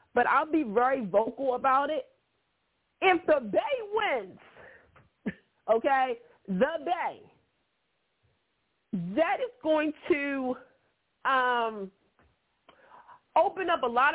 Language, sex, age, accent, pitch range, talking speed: English, female, 40-59, American, 225-315 Hz, 100 wpm